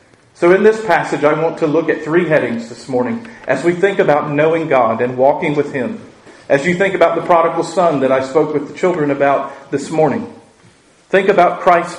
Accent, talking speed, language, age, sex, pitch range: American, 210 wpm, English, 40-59, male, 150-180 Hz